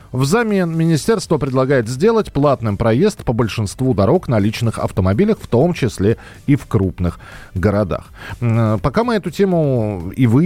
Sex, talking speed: male, 145 wpm